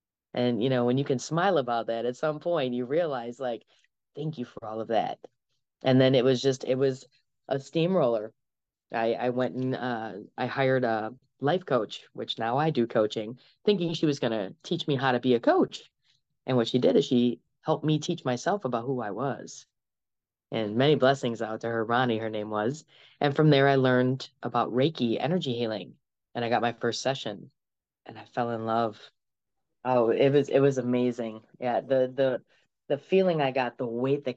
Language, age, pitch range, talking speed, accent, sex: English, 10-29, 120-135 Hz, 205 wpm, American, female